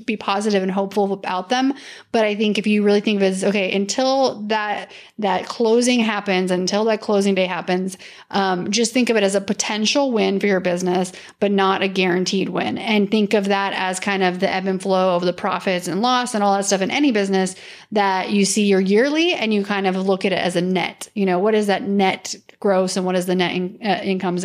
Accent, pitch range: American, 195-230 Hz